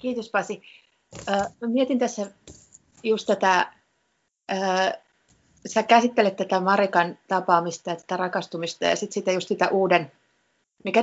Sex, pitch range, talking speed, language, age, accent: female, 180-215 Hz, 120 wpm, Finnish, 30-49, native